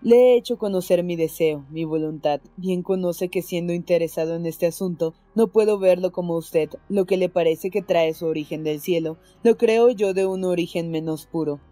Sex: female